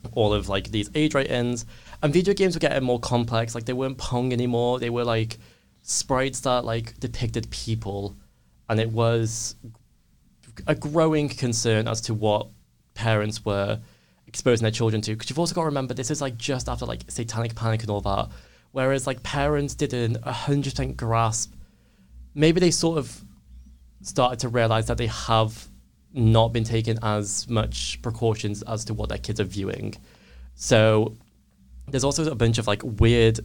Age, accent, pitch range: 20-39, British, 100-125 Hz